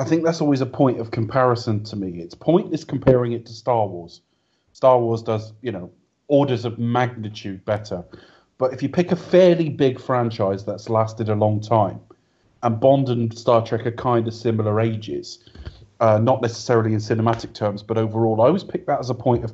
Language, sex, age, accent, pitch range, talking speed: English, male, 30-49, British, 110-125 Hz, 200 wpm